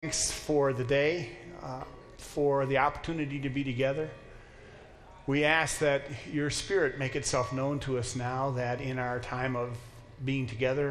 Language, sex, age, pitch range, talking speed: English, male, 40-59, 115-145 Hz, 160 wpm